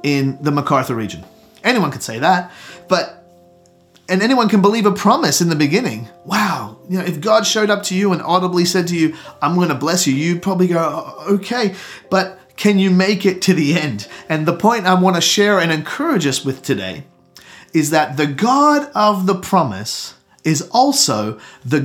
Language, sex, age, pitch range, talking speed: English, male, 30-49, 135-185 Hz, 190 wpm